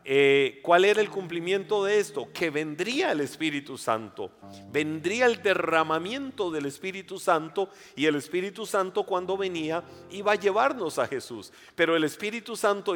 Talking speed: 155 wpm